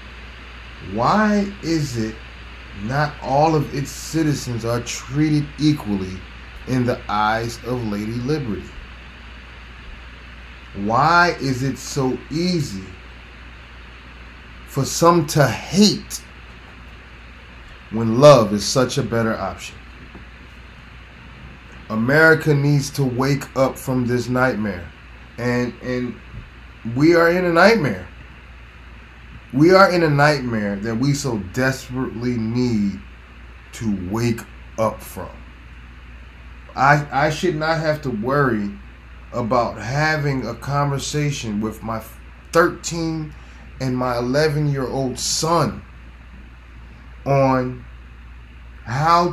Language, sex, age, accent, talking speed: English, male, 30-49, American, 100 wpm